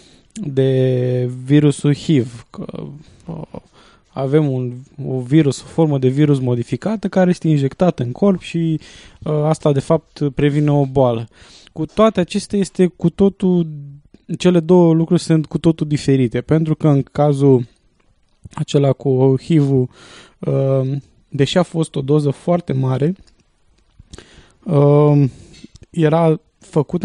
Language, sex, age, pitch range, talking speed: English, male, 20-39, 135-165 Hz, 115 wpm